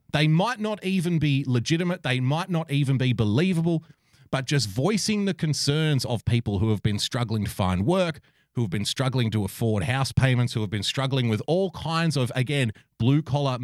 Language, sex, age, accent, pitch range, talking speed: English, male, 30-49, Australian, 105-145 Hz, 200 wpm